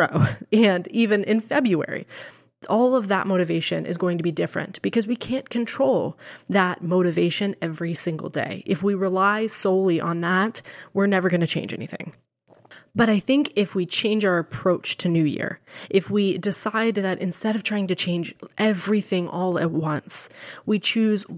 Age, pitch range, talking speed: 20-39, 180-225 Hz, 170 wpm